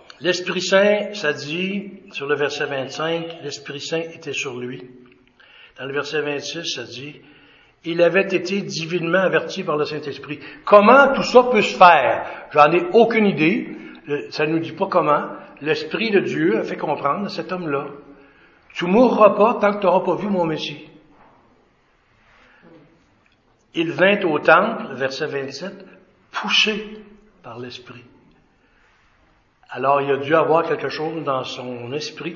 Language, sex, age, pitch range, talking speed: French, male, 60-79, 140-185 Hz, 155 wpm